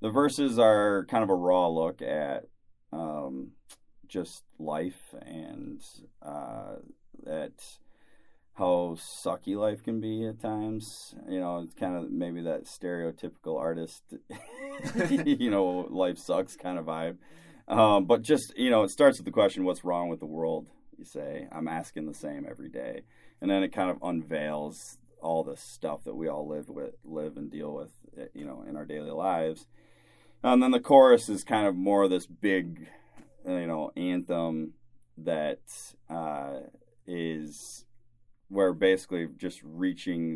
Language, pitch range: English, 80-105 Hz